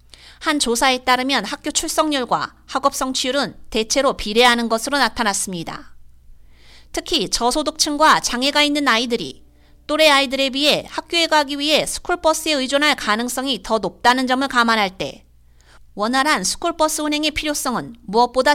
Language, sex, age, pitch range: Korean, female, 30-49, 210-290 Hz